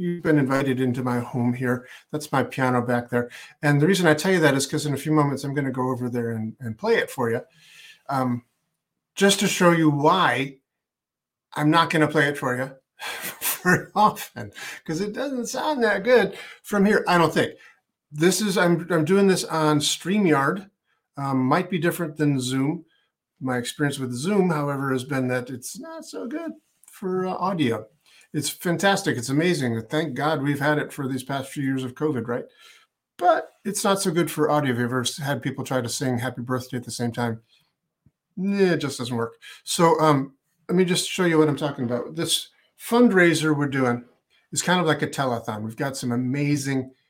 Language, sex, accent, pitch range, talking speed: English, male, American, 125-170 Hz, 200 wpm